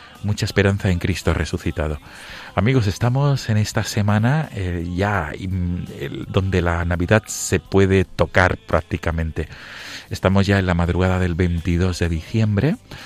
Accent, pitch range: Spanish, 85-100 Hz